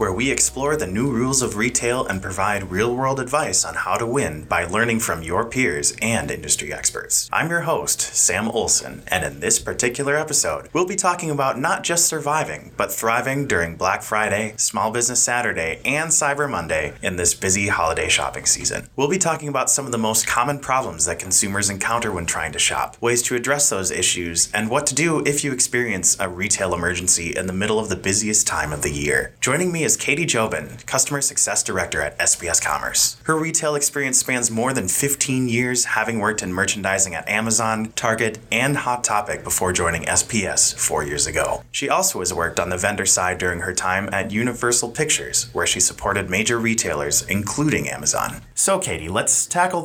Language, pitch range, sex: English, 95-140 Hz, male